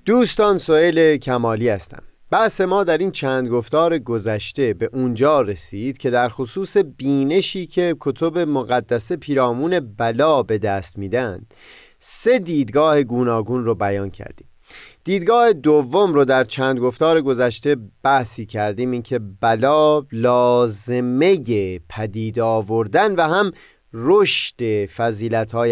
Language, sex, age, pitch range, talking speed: Persian, male, 30-49, 115-165 Hz, 120 wpm